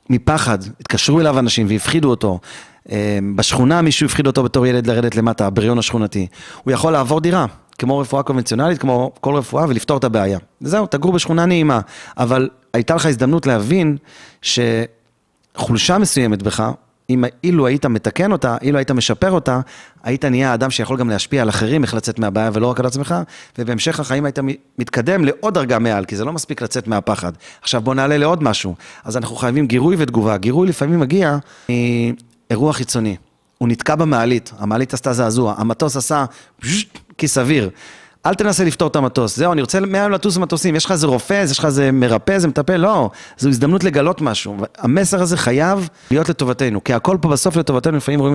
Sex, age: male, 30-49